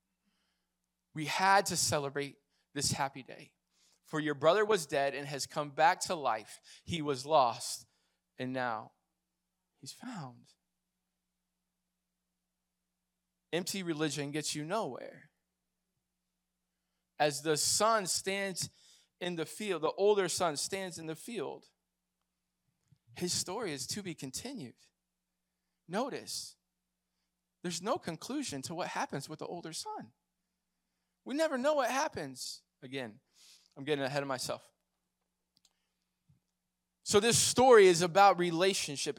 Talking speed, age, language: 120 wpm, 20-39, English